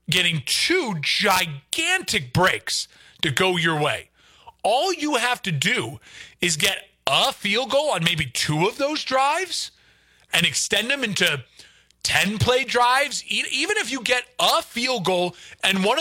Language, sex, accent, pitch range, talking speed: English, male, American, 150-210 Hz, 150 wpm